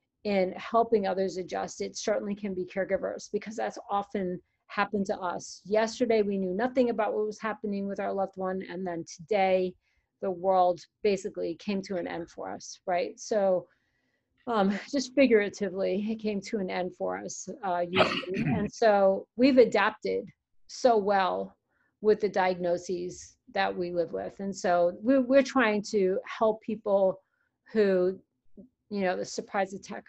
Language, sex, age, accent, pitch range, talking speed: English, female, 40-59, American, 185-220 Hz, 160 wpm